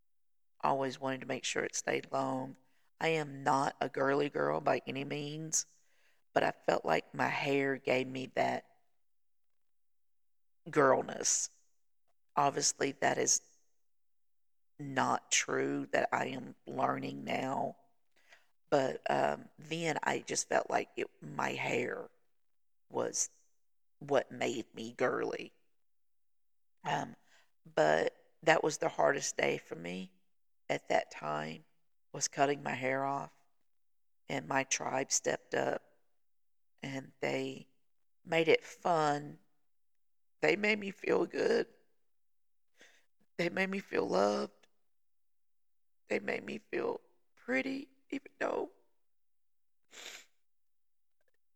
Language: English